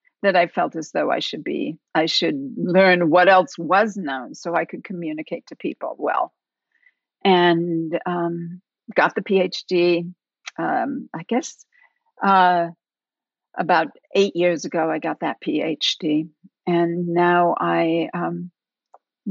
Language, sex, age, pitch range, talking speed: English, female, 50-69, 165-215 Hz, 135 wpm